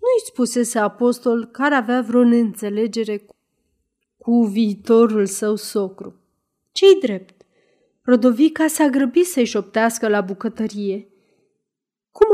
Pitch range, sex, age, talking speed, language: 210-280 Hz, female, 30-49, 100 wpm, Romanian